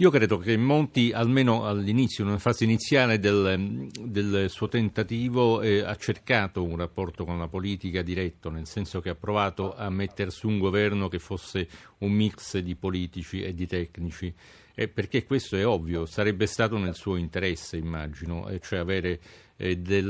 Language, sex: Italian, male